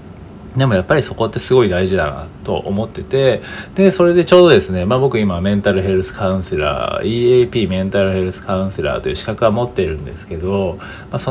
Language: Japanese